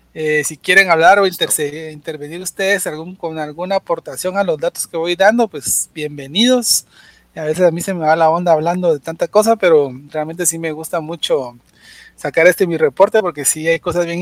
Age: 30-49